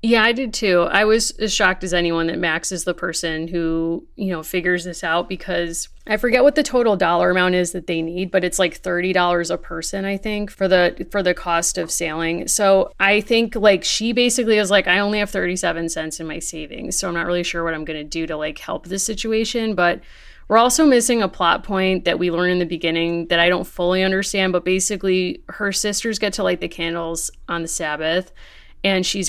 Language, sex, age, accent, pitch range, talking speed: English, female, 30-49, American, 170-205 Hz, 225 wpm